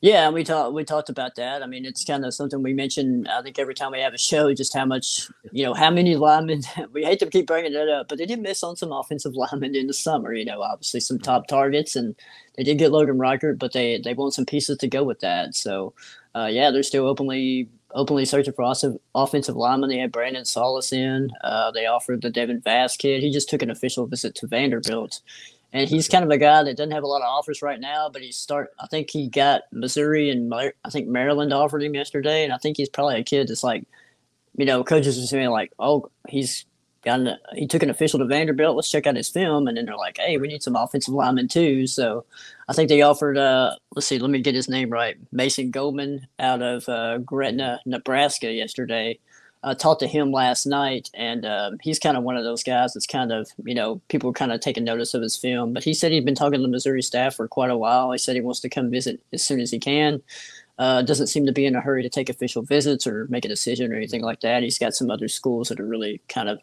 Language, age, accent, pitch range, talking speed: English, 30-49, American, 125-150 Hz, 255 wpm